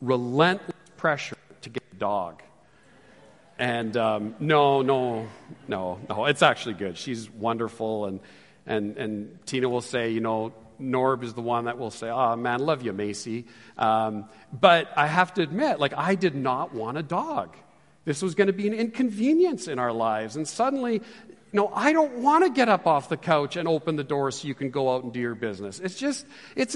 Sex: male